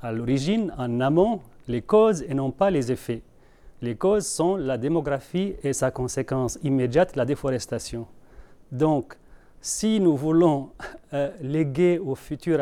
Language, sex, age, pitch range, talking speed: French, male, 40-59, 125-160 Hz, 145 wpm